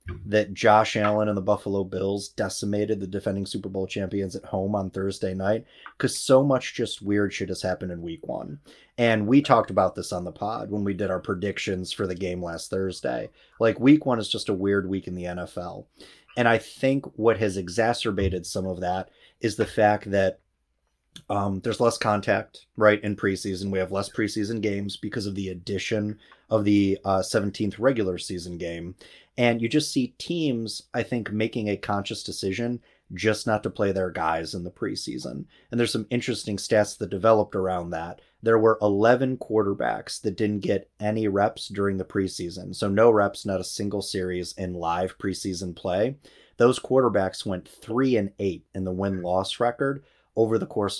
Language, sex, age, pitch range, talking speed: English, male, 30-49, 95-110 Hz, 185 wpm